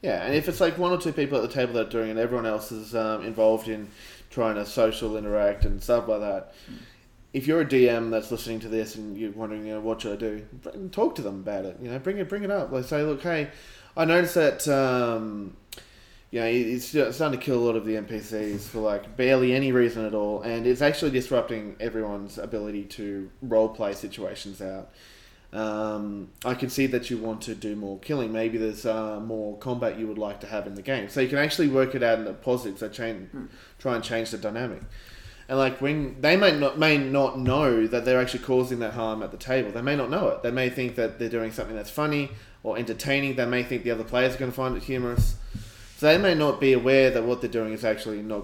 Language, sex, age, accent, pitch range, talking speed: English, male, 20-39, Australian, 110-135 Hz, 245 wpm